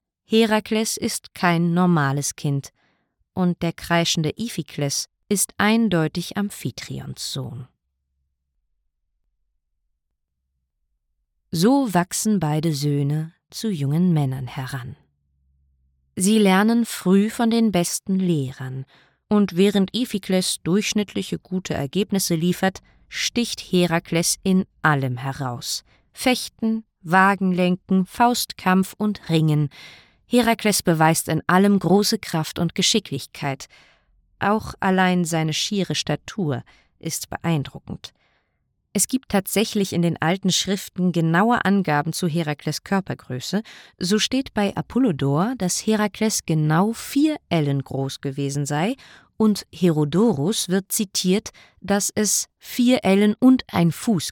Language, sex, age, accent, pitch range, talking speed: German, female, 20-39, German, 145-205 Hz, 105 wpm